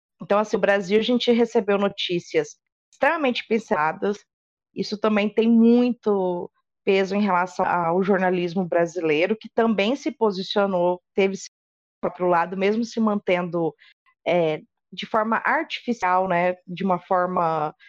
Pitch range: 195-255 Hz